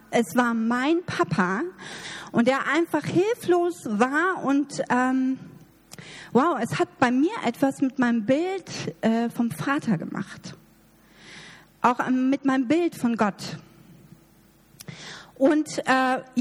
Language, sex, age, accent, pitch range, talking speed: German, female, 40-59, German, 235-305 Hz, 120 wpm